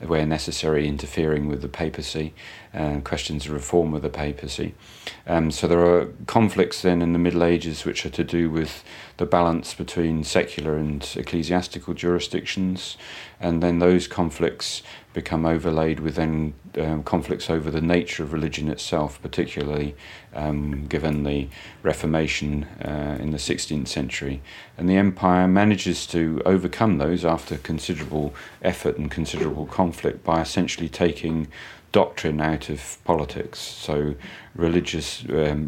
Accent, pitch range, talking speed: British, 75-85 Hz, 140 wpm